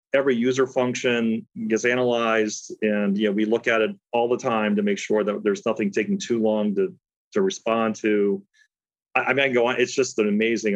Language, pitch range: English, 105-155 Hz